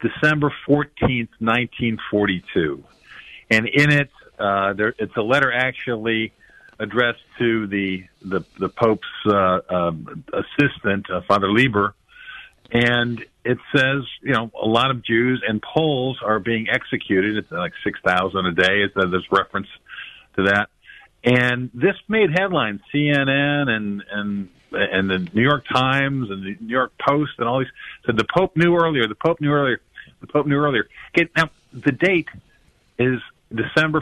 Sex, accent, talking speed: male, American, 155 wpm